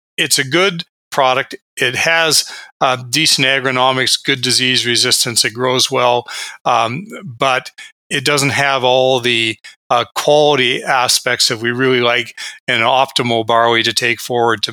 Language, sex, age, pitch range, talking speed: English, male, 40-59, 120-145 Hz, 145 wpm